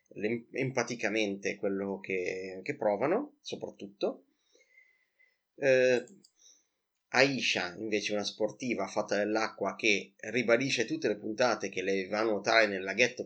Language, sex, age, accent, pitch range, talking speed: Italian, male, 30-49, native, 105-130 Hz, 115 wpm